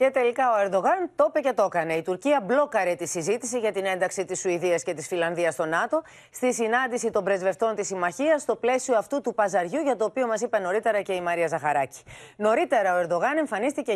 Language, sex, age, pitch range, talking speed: Greek, female, 30-49, 170-245 Hz, 210 wpm